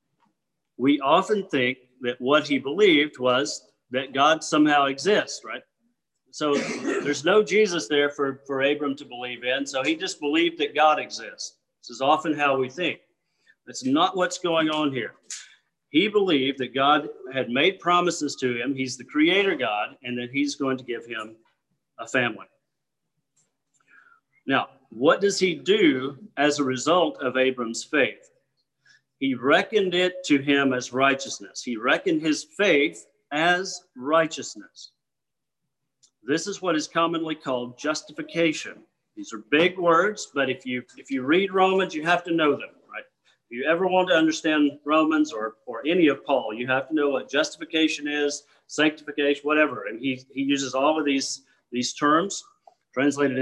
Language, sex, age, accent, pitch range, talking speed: English, male, 50-69, American, 135-175 Hz, 160 wpm